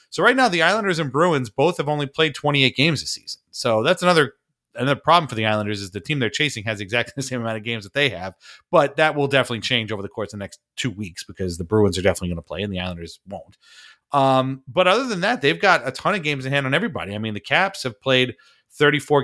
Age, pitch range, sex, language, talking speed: 30-49, 105-140 Hz, male, English, 265 wpm